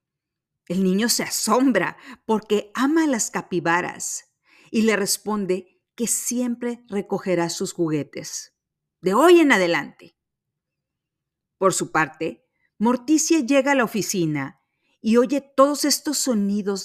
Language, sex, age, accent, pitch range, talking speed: Spanish, female, 40-59, Mexican, 160-230 Hz, 120 wpm